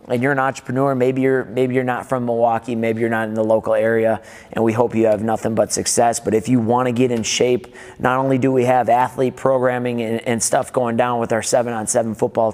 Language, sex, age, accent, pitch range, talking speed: English, male, 30-49, American, 115-130 Hz, 240 wpm